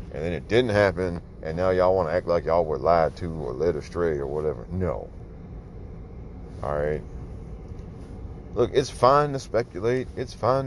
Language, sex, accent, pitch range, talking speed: English, male, American, 85-105 Hz, 175 wpm